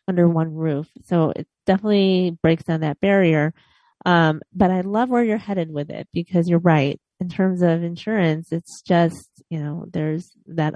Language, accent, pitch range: English, American, 150-185 Hz